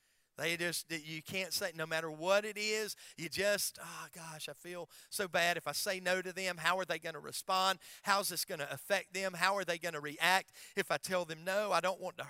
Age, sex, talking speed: 40-59, male, 255 wpm